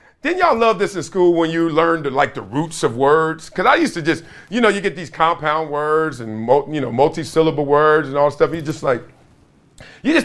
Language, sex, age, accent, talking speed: English, male, 40-59, American, 240 wpm